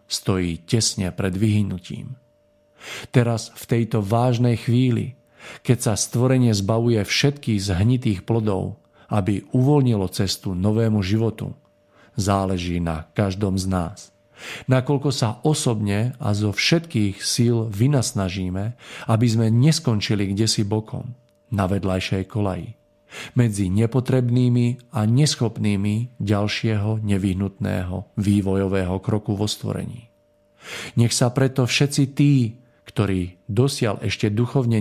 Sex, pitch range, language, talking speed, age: male, 100-120 Hz, Slovak, 105 wpm, 40-59